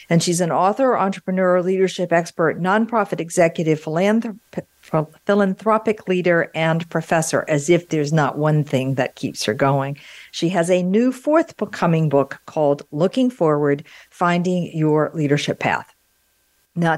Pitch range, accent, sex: 145-190 Hz, American, female